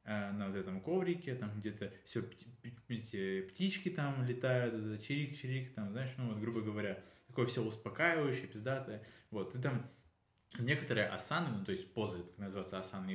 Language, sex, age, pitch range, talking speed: Russian, male, 20-39, 100-120 Hz, 150 wpm